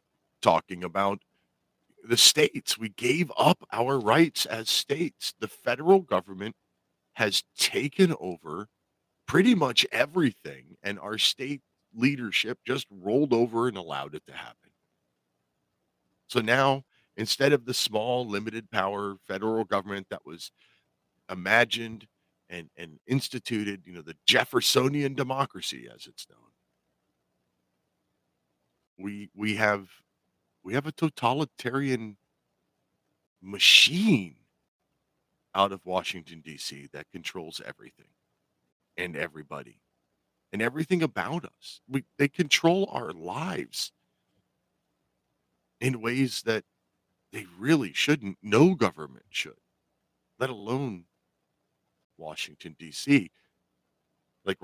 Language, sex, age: English, male, 40-59